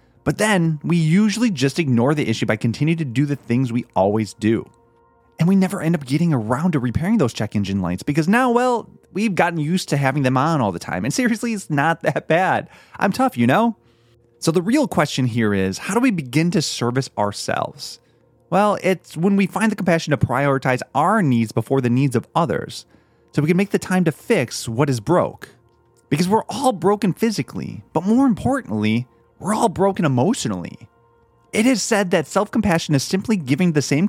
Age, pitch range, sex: 30-49, 120-195 Hz, male